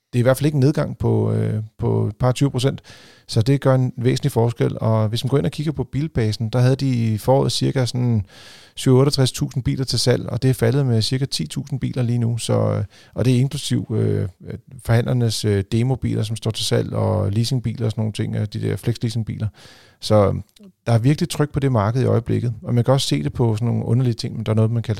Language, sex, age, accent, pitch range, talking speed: Danish, male, 40-59, native, 110-130 Hz, 240 wpm